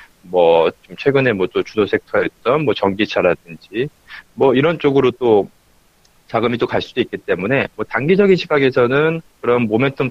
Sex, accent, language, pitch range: male, native, Korean, 115-175 Hz